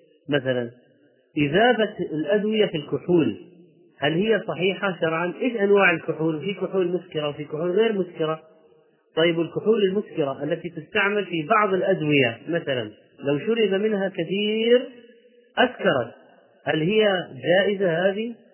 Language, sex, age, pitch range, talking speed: Arabic, male, 30-49, 165-210 Hz, 120 wpm